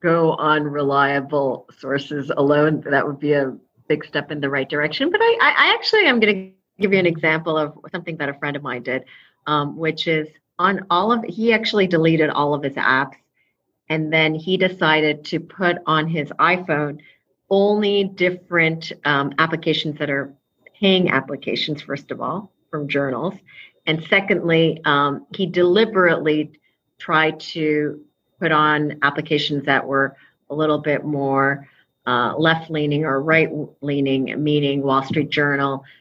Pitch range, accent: 140-165 Hz, American